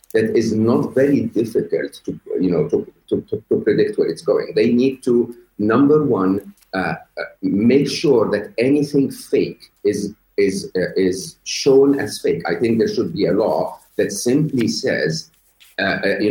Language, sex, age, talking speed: English, male, 40-59, 170 wpm